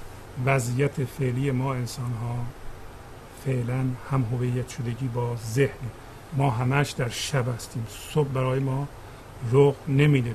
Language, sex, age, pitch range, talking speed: Persian, male, 50-69, 115-145 Hz, 115 wpm